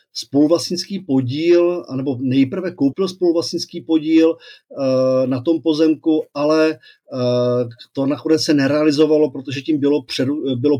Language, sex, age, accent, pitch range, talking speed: Czech, male, 40-59, native, 125-160 Hz, 105 wpm